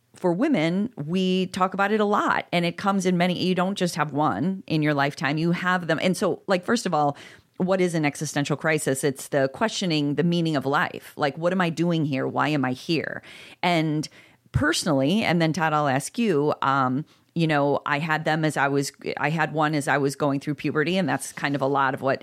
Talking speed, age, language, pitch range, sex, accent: 230 wpm, 40-59, English, 145-180 Hz, female, American